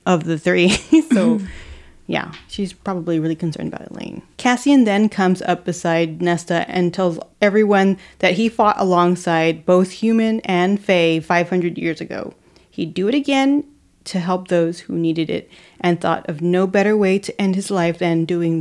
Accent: American